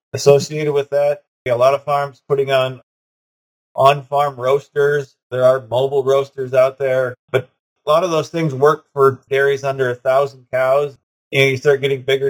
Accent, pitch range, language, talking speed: American, 125-145 Hz, English, 185 wpm